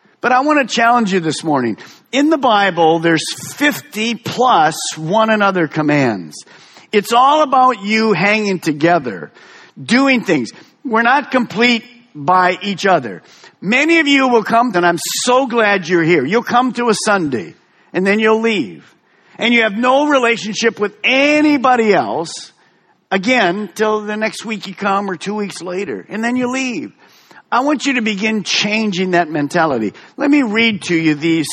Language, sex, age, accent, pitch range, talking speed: English, male, 50-69, American, 175-250 Hz, 165 wpm